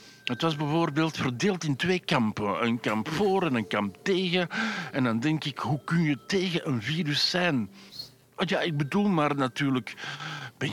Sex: male